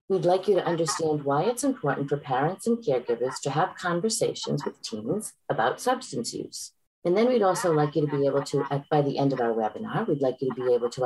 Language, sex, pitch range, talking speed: English, female, 130-180 Hz, 235 wpm